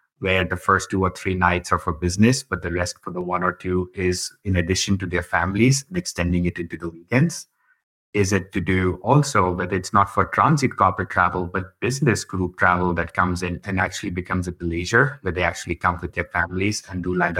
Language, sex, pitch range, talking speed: English, male, 90-110 Hz, 220 wpm